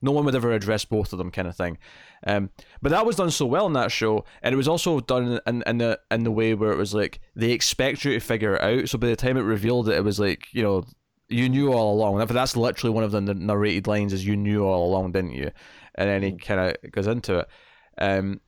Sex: male